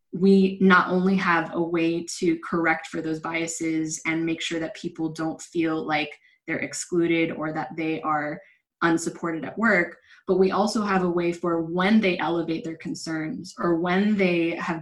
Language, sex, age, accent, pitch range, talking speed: English, female, 20-39, American, 160-180 Hz, 180 wpm